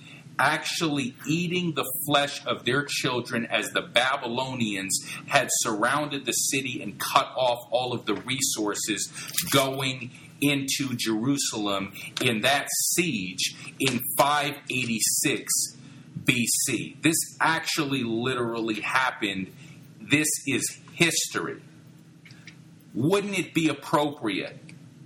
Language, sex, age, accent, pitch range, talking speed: English, male, 40-59, American, 135-155 Hz, 100 wpm